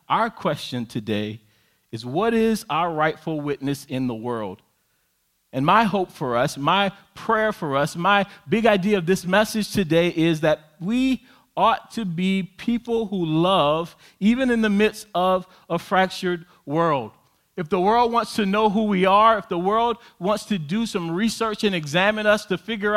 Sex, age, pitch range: male, 40-59, 165-220 Hz